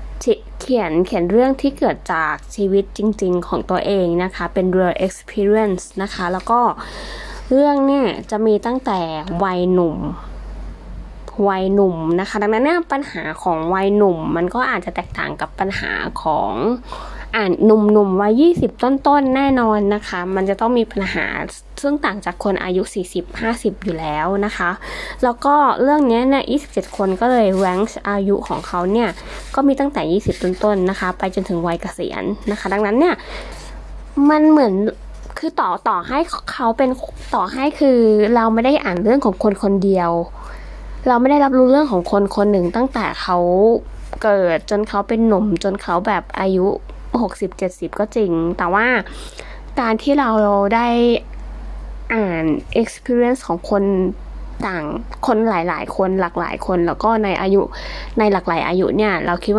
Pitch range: 185-245 Hz